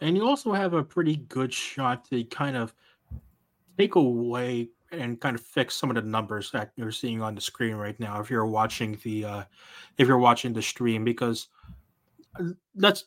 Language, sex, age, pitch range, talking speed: English, male, 20-39, 110-135 Hz, 190 wpm